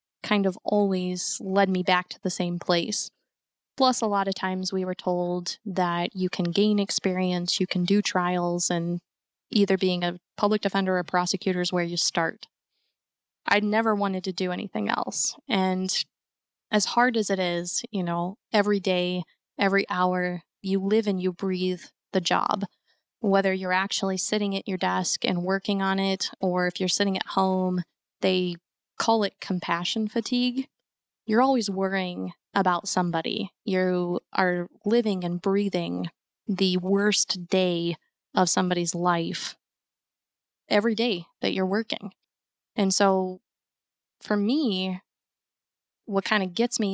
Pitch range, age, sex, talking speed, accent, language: 180-205 Hz, 20-39, female, 150 wpm, American, English